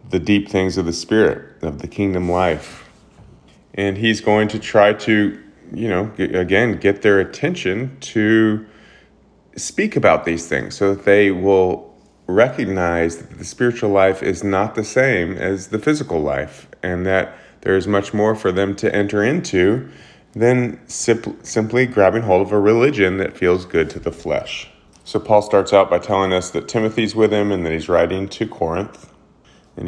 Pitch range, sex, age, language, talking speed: 90-110 Hz, male, 30-49, English, 175 wpm